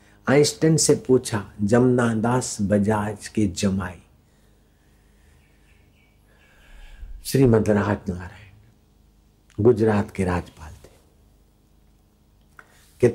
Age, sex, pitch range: 60-79, male, 75-115 Hz